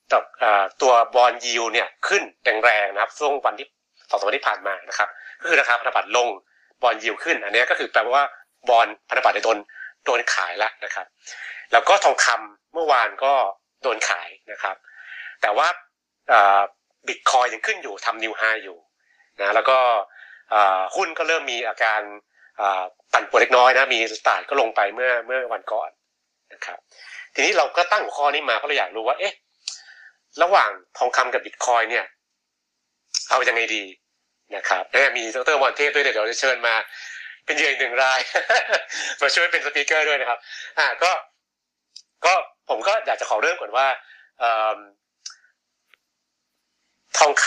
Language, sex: Thai, male